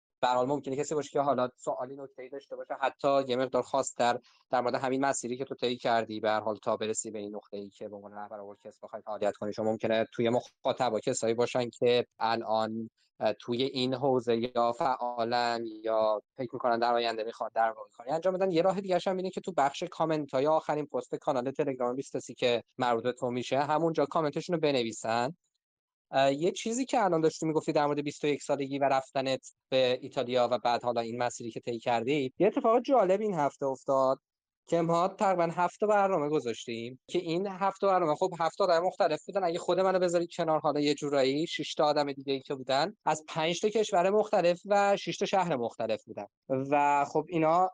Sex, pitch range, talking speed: male, 125-160 Hz, 190 wpm